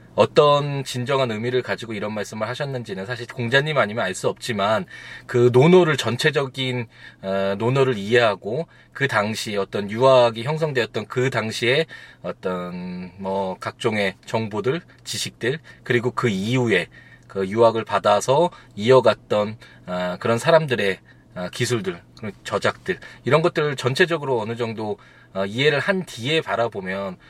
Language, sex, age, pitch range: Korean, male, 20-39, 105-150 Hz